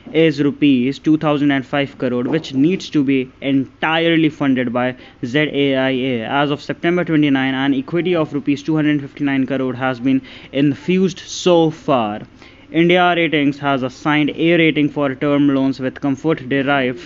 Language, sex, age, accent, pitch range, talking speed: English, male, 20-39, Indian, 135-160 Hz, 135 wpm